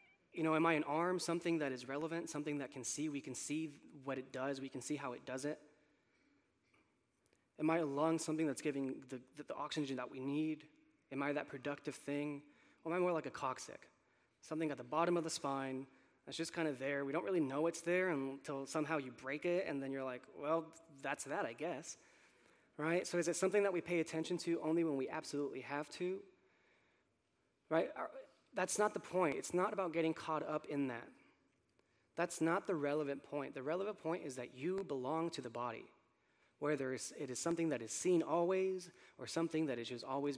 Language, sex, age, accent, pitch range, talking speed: English, male, 20-39, American, 135-170 Hz, 210 wpm